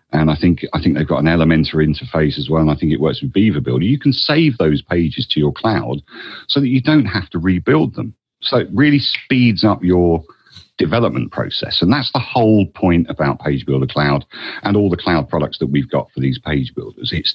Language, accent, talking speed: English, British, 230 wpm